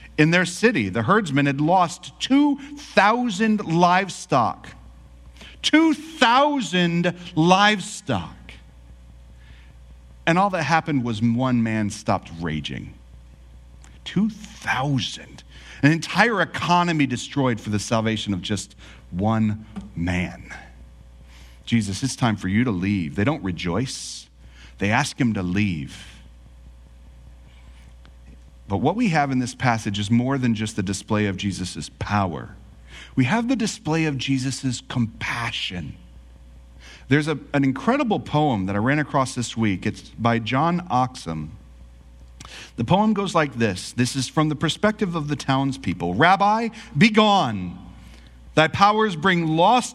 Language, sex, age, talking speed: English, male, 40-59, 125 wpm